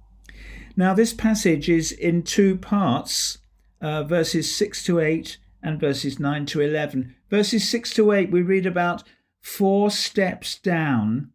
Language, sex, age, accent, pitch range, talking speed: English, male, 50-69, British, 125-185 Hz, 145 wpm